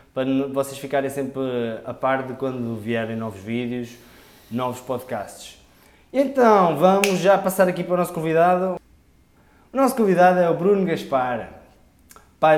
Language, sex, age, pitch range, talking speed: Portuguese, male, 20-39, 120-170 Hz, 145 wpm